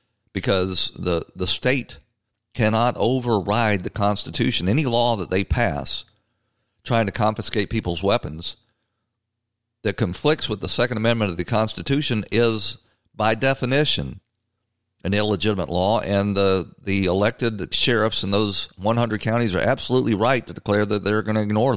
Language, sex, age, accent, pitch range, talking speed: English, male, 50-69, American, 90-115 Hz, 145 wpm